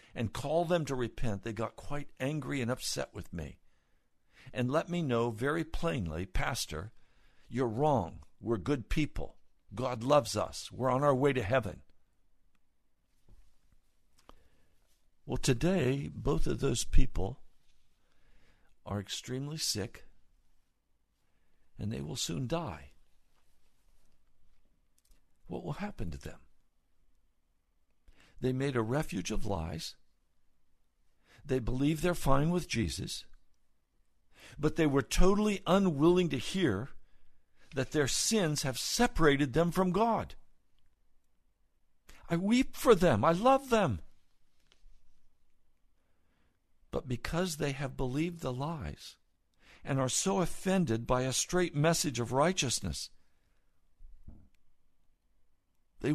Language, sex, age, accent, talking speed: English, male, 60-79, American, 110 wpm